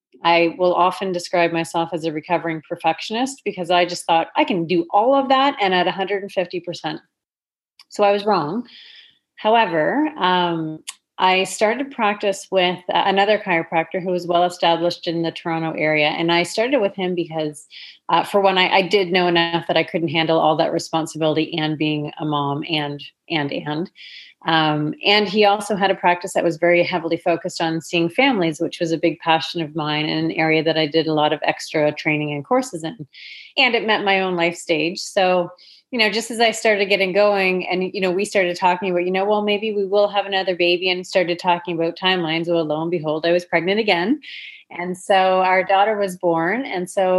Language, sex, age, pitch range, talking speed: English, female, 30-49, 165-200 Hz, 200 wpm